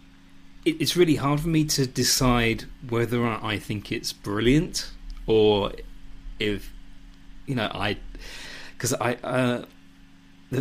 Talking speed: 120 wpm